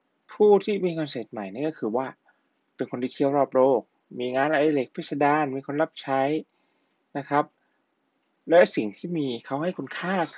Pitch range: 115-155 Hz